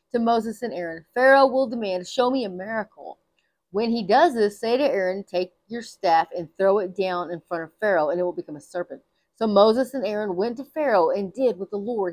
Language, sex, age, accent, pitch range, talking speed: English, female, 30-49, American, 185-250 Hz, 235 wpm